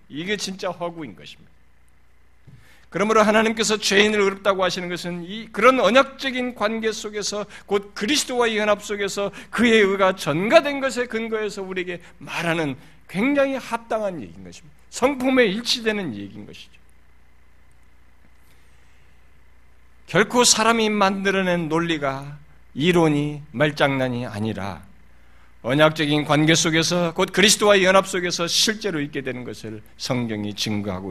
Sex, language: male, Korean